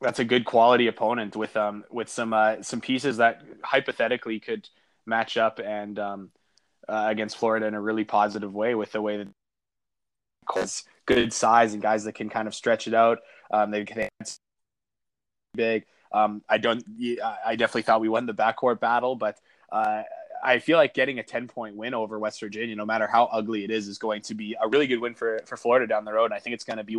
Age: 20-39